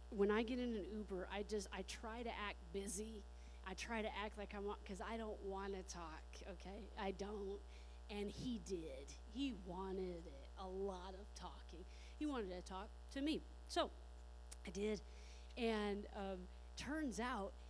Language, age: English, 40-59